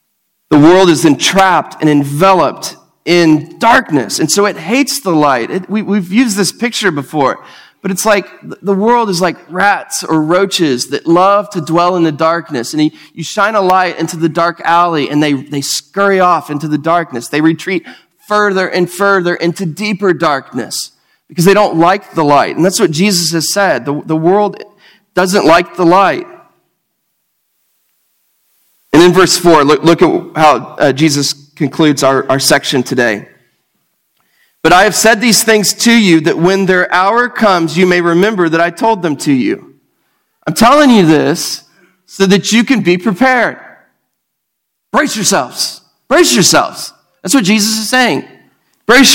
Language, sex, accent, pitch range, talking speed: English, male, American, 160-205 Hz, 165 wpm